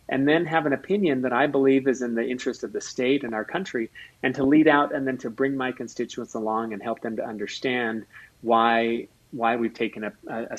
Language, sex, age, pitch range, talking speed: English, male, 30-49, 115-140 Hz, 225 wpm